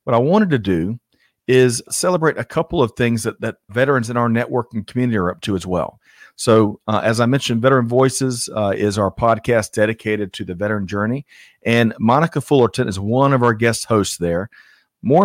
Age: 40-59